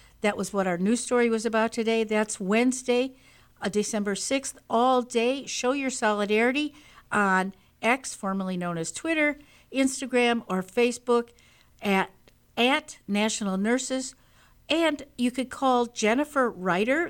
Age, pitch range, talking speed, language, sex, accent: 60-79, 190-240 Hz, 130 wpm, English, female, American